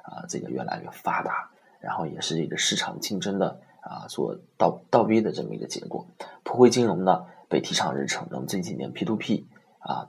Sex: male